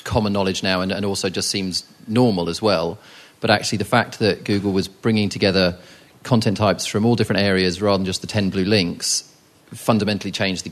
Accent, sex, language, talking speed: British, male, English, 200 wpm